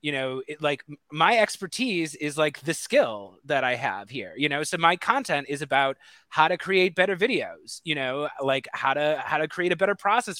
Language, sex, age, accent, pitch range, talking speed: English, male, 30-49, American, 140-185 Hz, 210 wpm